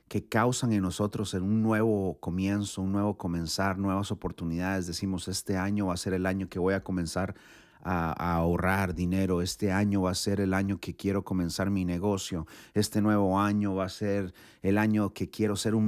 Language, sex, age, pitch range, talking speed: Spanish, male, 40-59, 85-105 Hz, 195 wpm